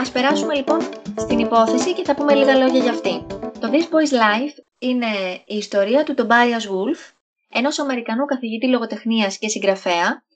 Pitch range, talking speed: 215-275 Hz, 160 wpm